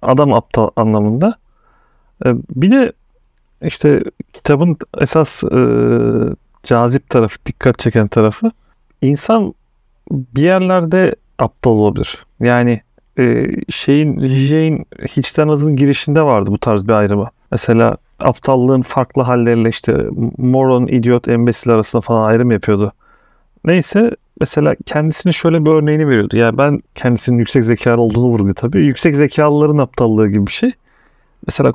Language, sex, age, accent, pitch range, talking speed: Turkish, male, 40-59, native, 115-150 Hz, 125 wpm